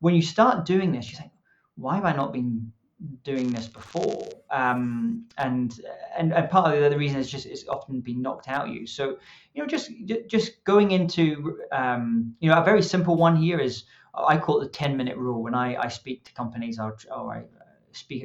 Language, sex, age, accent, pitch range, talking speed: English, male, 30-49, British, 125-170 Hz, 215 wpm